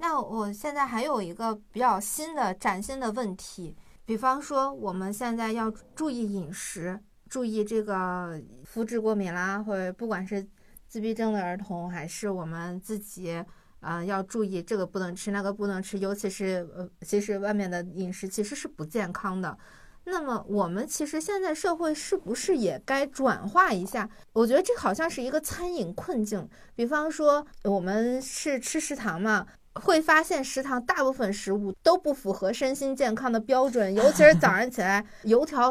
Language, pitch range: Chinese, 200-280 Hz